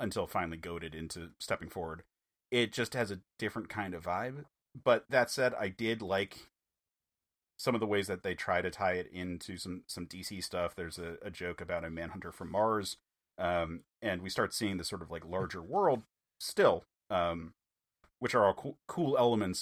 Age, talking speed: 30-49, 195 wpm